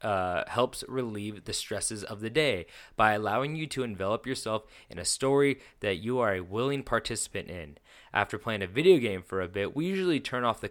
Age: 20-39